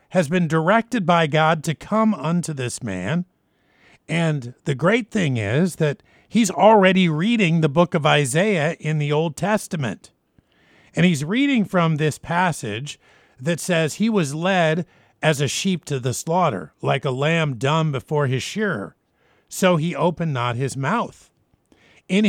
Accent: American